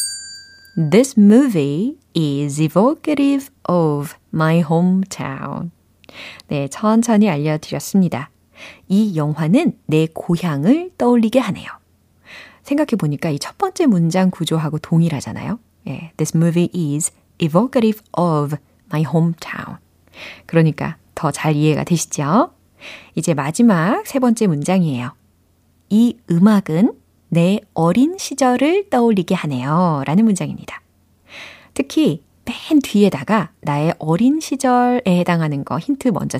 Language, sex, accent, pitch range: Korean, female, native, 155-245 Hz